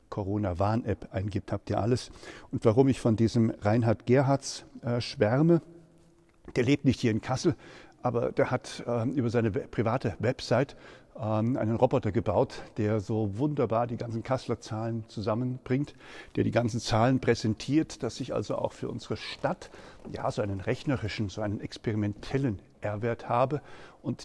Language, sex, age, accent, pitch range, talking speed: German, male, 50-69, German, 105-130 Hz, 155 wpm